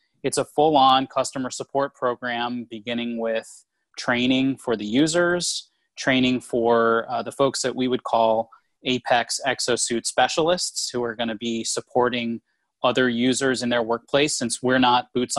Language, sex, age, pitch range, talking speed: English, male, 20-39, 115-130 Hz, 150 wpm